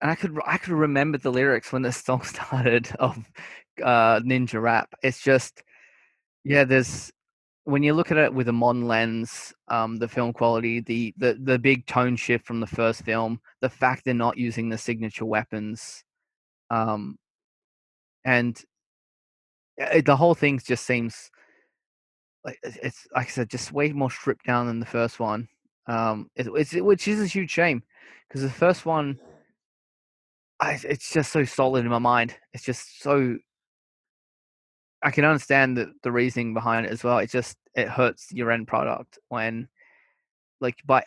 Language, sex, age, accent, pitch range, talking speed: English, male, 20-39, Australian, 115-135 Hz, 170 wpm